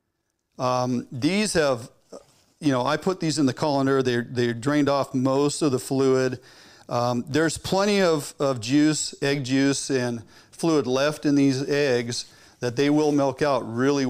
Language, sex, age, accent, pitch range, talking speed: English, male, 40-59, American, 125-145 Hz, 165 wpm